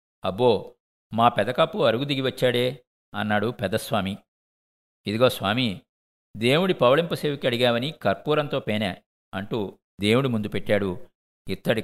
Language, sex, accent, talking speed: Telugu, male, native, 95 wpm